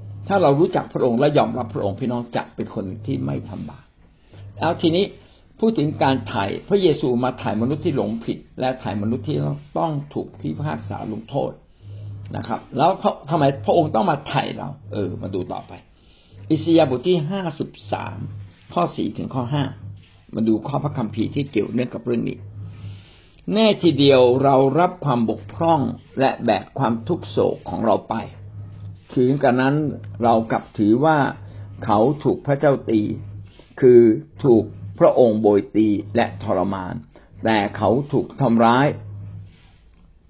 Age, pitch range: 60-79, 100-135 Hz